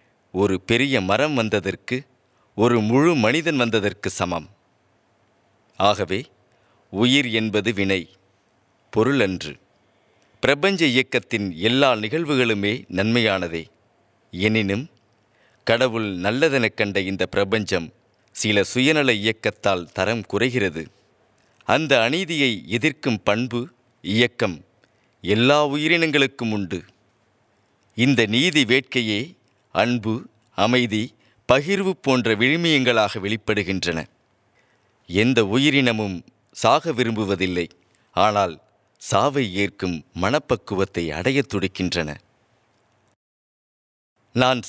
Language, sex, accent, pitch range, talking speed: Tamil, male, native, 100-125 Hz, 80 wpm